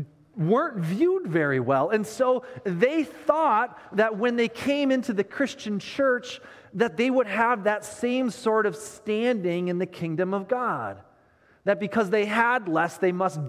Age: 30-49